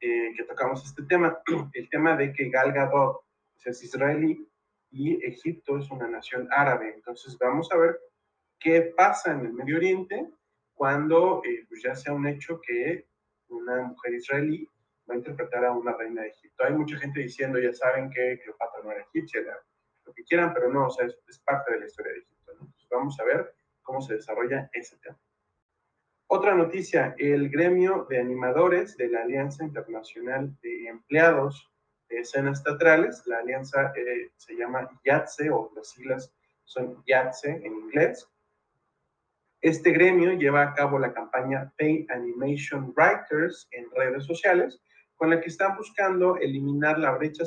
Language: Spanish